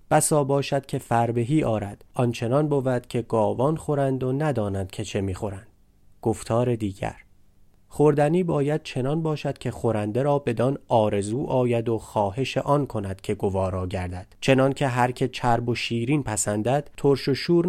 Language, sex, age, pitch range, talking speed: Persian, male, 30-49, 110-140 Hz, 155 wpm